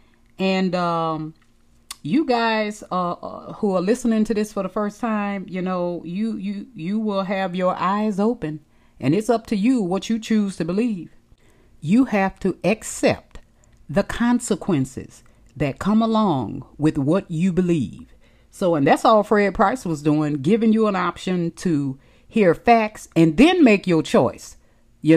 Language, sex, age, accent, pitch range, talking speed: English, female, 40-59, American, 165-225 Hz, 160 wpm